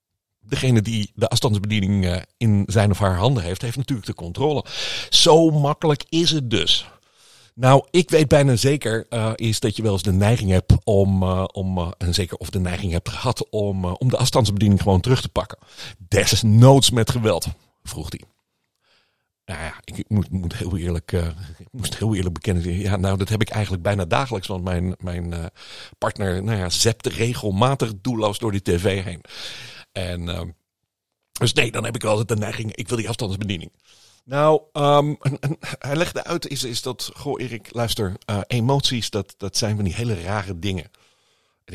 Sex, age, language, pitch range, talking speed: male, 50-69, Dutch, 95-130 Hz, 165 wpm